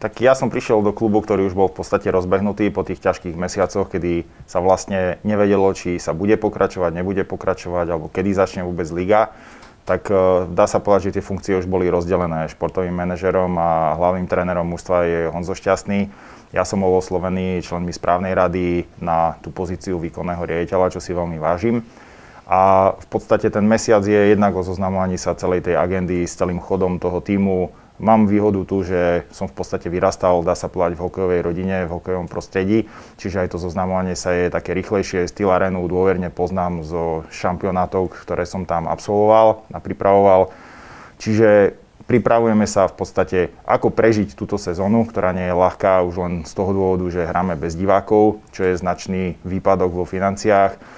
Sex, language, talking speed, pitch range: male, Slovak, 175 wpm, 90-100 Hz